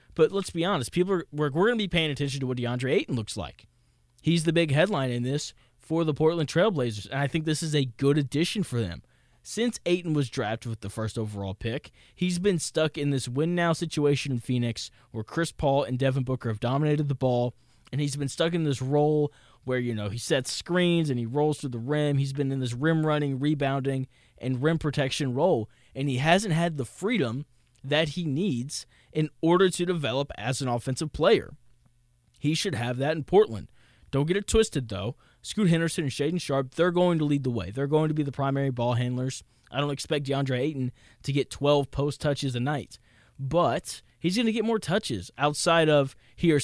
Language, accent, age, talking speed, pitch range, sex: English, American, 20-39, 210 wpm, 125-160 Hz, male